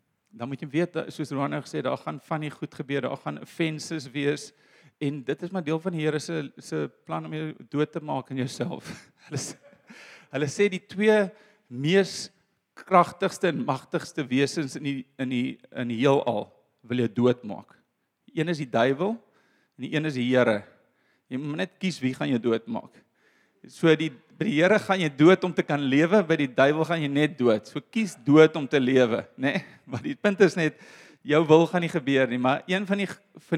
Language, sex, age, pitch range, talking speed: Finnish, male, 40-59, 135-170 Hz, 205 wpm